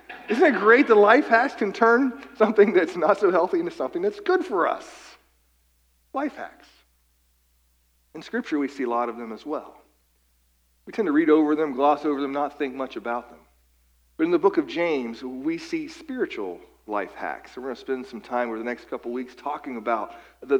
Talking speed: 205 wpm